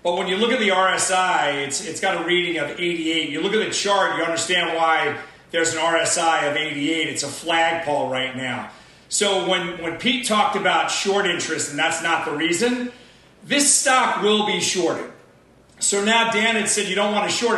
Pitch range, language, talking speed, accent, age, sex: 170-230 Hz, English, 200 wpm, American, 40-59, male